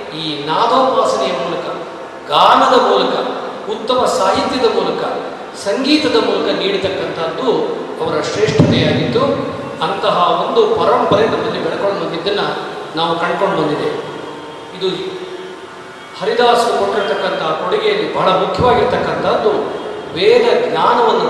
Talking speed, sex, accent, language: 85 wpm, male, native, Kannada